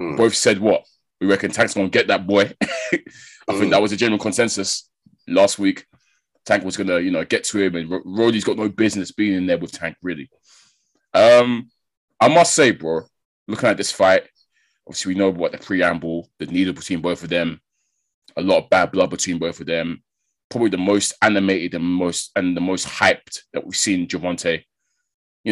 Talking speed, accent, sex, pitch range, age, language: 195 wpm, British, male, 90-120 Hz, 20-39, English